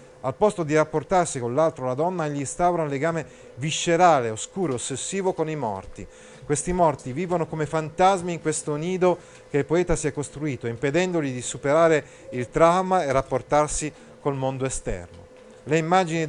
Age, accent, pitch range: 40-59, native, 135-180 Hz